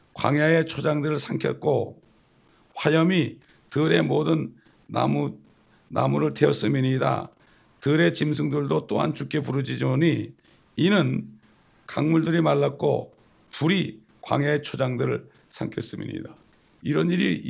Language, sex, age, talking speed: English, male, 60-79, 80 wpm